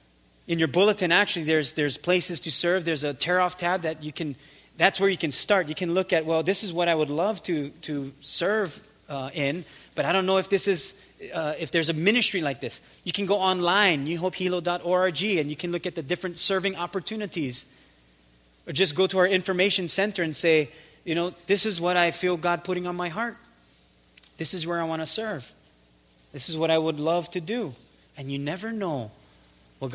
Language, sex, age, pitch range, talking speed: English, male, 20-39, 125-180 Hz, 210 wpm